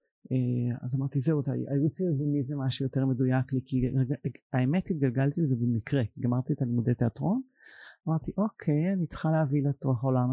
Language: Hebrew